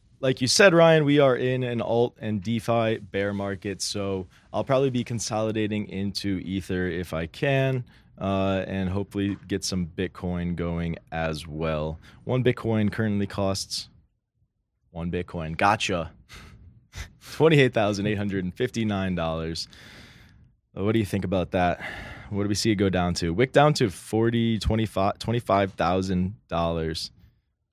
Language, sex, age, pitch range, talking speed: English, male, 20-39, 95-115 Hz, 125 wpm